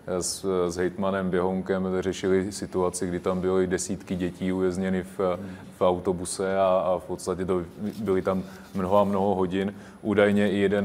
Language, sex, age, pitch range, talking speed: Czech, male, 30-49, 90-100 Hz, 160 wpm